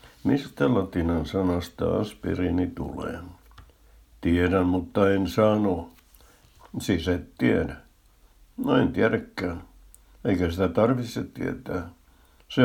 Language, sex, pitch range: Finnish, male, 85-100 Hz